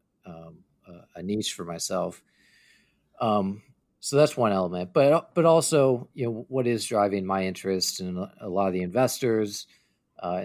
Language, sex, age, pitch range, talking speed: English, male, 40-59, 95-115 Hz, 155 wpm